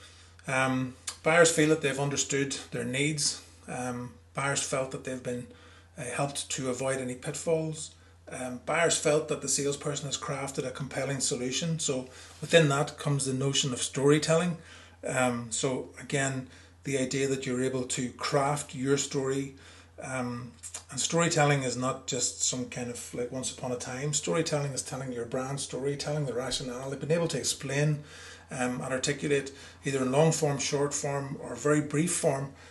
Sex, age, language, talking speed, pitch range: male, 30-49, English, 165 wpm, 125-150 Hz